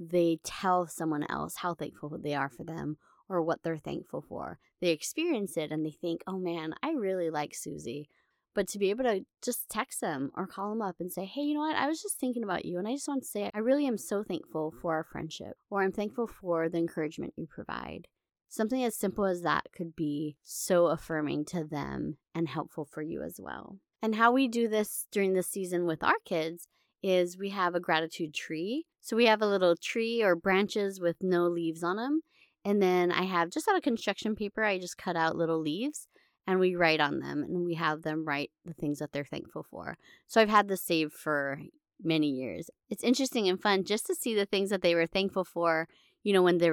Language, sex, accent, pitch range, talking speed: English, female, American, 165-210 Hz, 225 wpm